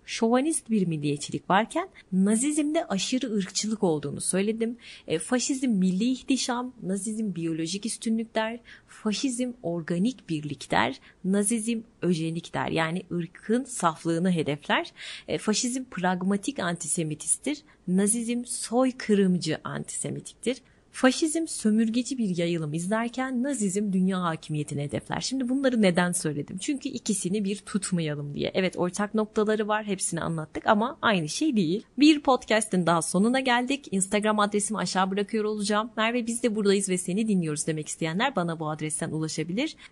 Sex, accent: female, native